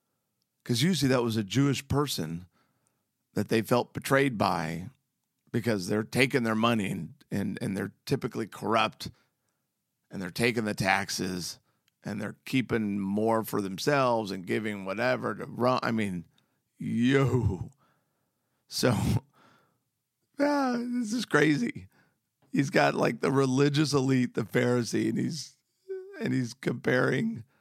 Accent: American